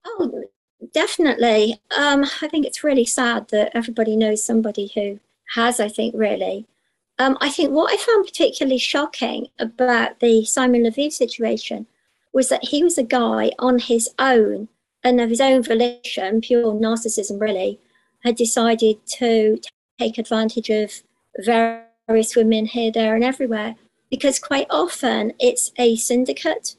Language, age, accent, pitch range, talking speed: English, 50-69, British, 215-245 Hz, 145 wpm